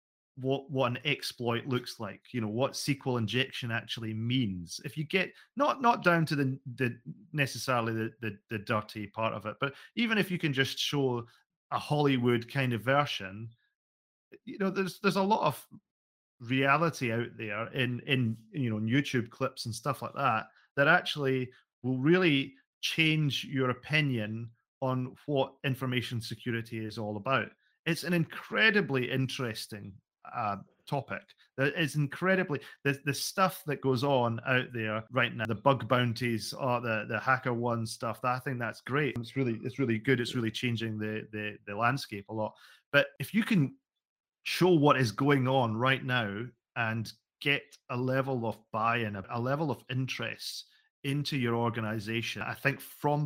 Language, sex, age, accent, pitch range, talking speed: English, male, 30-49, British, 115-140 Hz, 170 wpm